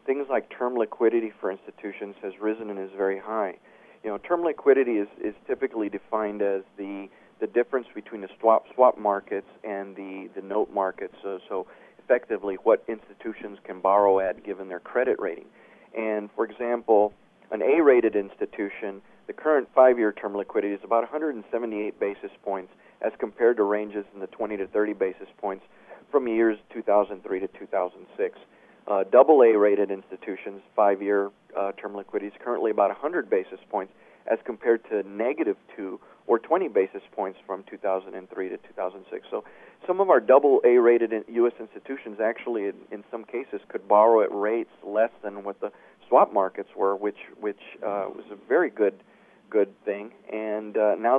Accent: American